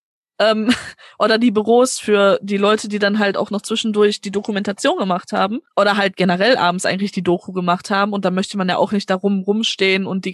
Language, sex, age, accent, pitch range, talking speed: German, female, 20-39, German, 200-260 Hz, 210 wpm